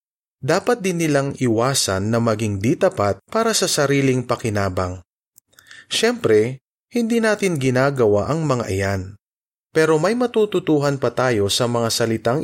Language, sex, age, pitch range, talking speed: Filipino, male, 30-49, 110-150 Hz, 125 wpm